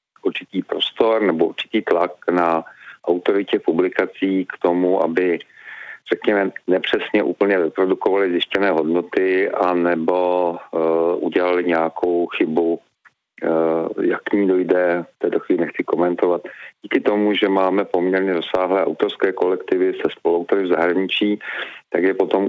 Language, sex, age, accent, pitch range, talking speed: Czech, male, 40-59, native, 85-100 Hz, 130 wpm